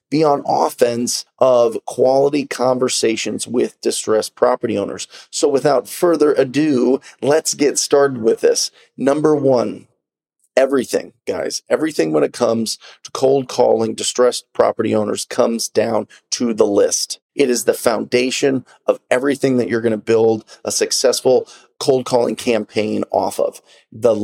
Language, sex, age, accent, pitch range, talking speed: English, male, 30-49, American, 115-155 Hz, 140 wpm